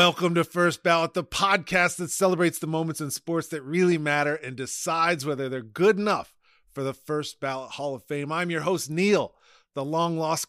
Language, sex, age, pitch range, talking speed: English, male, 30-49, 150-190 Hz, 195 wpm